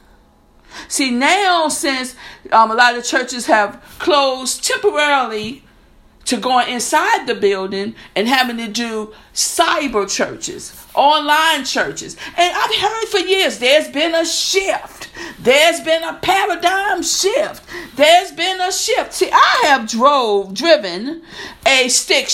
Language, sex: English, female